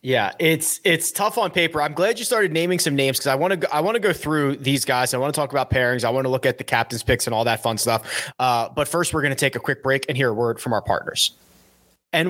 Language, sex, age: English, male, 20-39